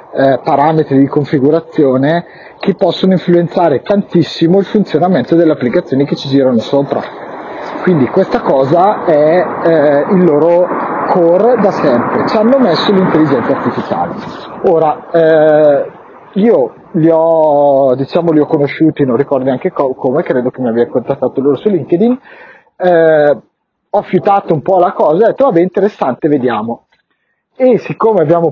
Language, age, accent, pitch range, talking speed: Italian, 30-49, native, 140-190 Hz, 140 wpm